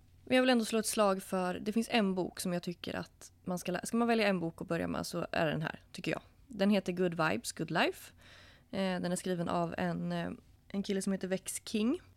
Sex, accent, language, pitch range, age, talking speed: female, native, Swedish, 170-210 Hz, 20-39, 245 wpm